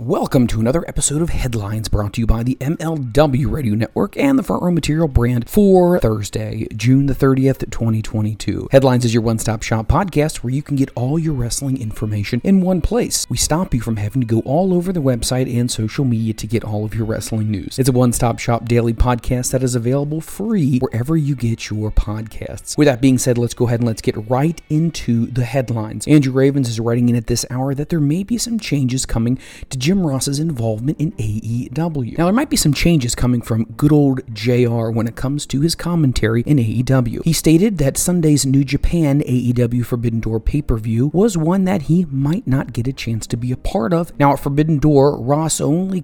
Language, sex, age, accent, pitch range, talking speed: English, male, 30-49, American, 115-150 Hz, 215 wpm